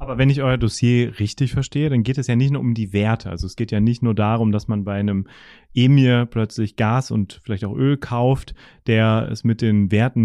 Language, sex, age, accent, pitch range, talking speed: German, male, 30-49, German, 110-140 Hz, 235 wpm